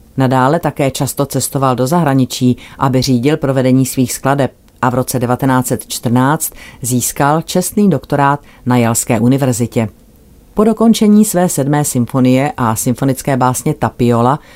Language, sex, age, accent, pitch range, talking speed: Czech, female, 40-59, native, 125-145 Hz, 125 wpm